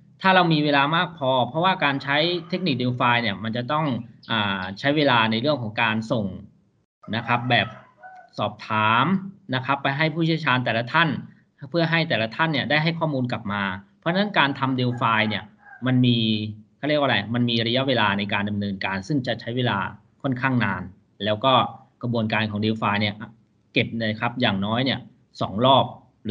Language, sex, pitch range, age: Thai, male, 110-140 Hz, 20-39